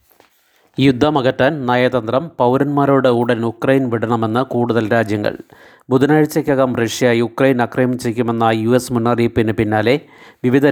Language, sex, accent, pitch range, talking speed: Malayalam, male, native, 120-135 Hz, 95 wpm